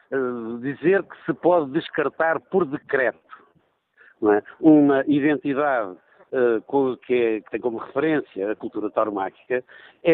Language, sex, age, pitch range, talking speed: Portuguese, male, 60-79, 120-160 Hz, 130 wpm